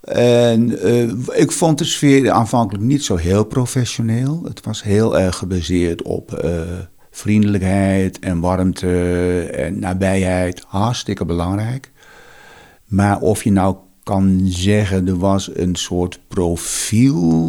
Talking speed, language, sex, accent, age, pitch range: 125 wpm, Dutch, male, Dutch, 50-69, 90-115 Hz